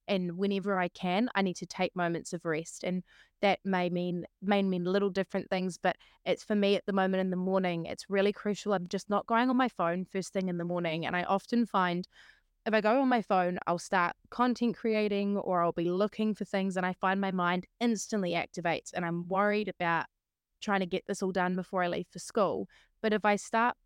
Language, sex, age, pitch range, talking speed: English, female, 20-39, 180-205 Hz, 230 wpm